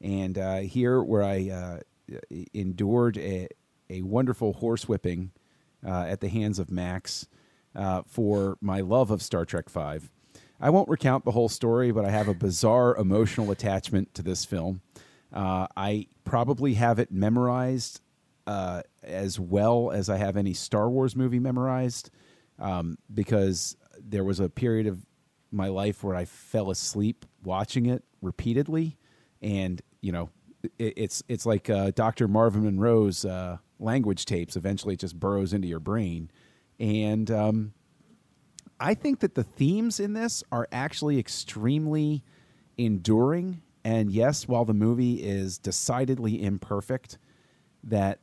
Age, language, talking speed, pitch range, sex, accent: 40-59, English, 145 wpm, 95-125 Hz, male, American